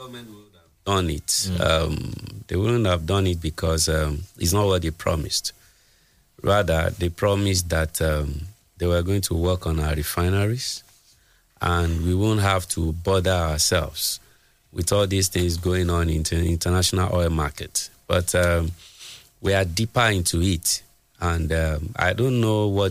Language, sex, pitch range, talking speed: English, male, 85-100 Hz, 160 wpm